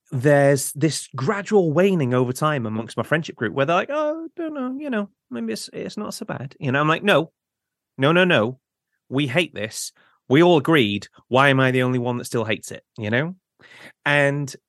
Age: 30-49